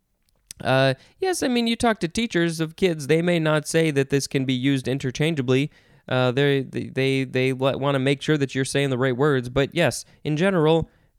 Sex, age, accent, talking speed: male, 20-39, American, 205 wpm